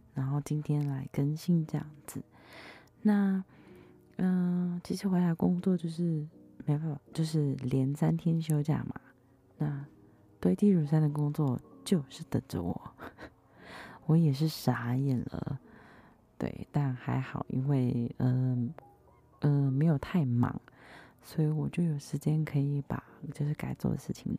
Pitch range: 135-170 Hz